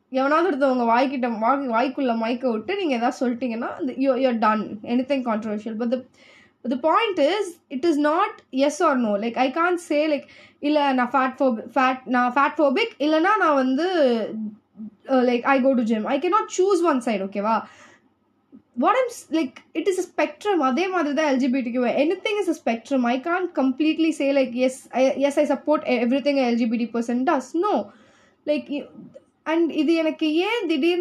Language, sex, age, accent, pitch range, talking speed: English, female, 20-39, Indian, 245-305 Hz, 130 wpm